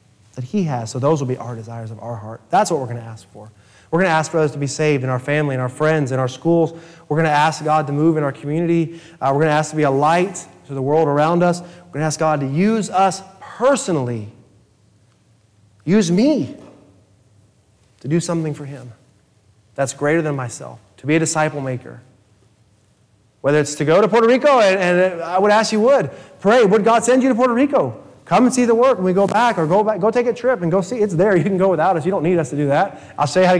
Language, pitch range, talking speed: English, 115-180 Hz, 260 wpm